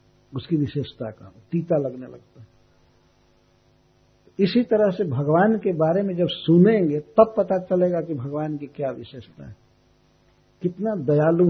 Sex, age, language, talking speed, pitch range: male, 60-79, Hindi, 140 wpm, 135-180 Hz